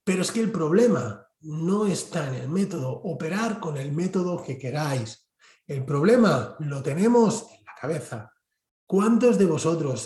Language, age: Spanish, 40-59